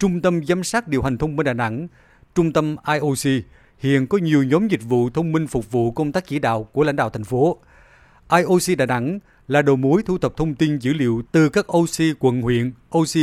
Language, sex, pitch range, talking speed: Vietnamese, male, 125-165 Hz, 225 wpm